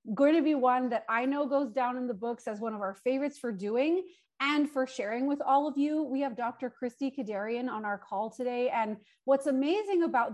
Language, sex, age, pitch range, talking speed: English, female, 30-49, 225-280 Hz, 225 wpm